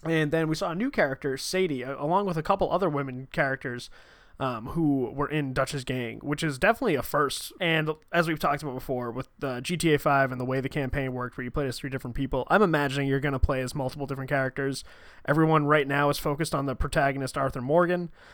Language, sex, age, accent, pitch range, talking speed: English, male, 20-39, American, 130-155 Hz, 225 wpm